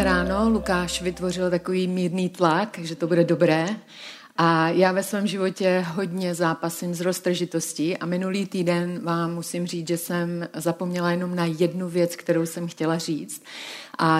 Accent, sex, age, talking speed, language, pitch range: native, female, 30-49, 155 wpm, Czech, 170-195 Hz